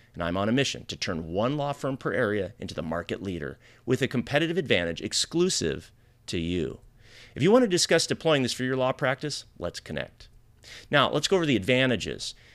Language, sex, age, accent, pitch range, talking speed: English, male, 30-49, American, 100-140 Hz, 200 wpm